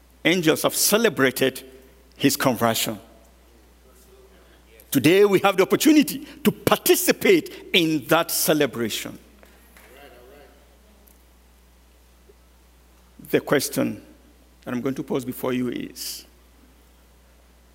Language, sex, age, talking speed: English, male, 60-79, 85 wpm